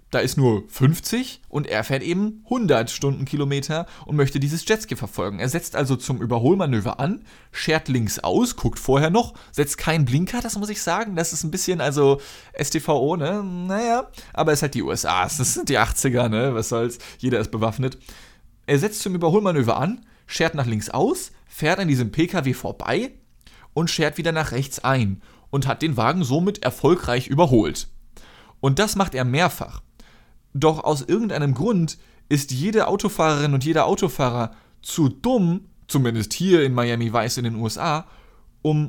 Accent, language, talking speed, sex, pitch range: German, German, 170 wpm, male, 125-175 Hz